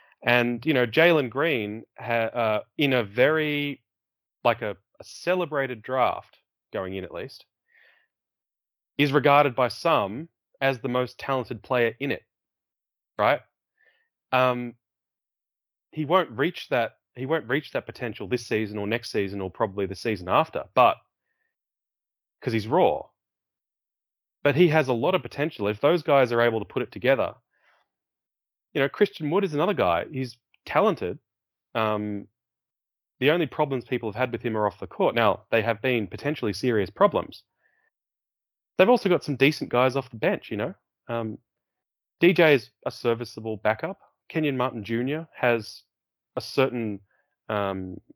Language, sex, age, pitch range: English, male, 30-49, 105-145 Hz